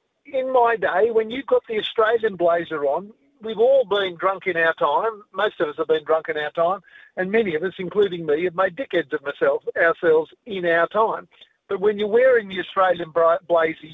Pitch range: 170-215 Hz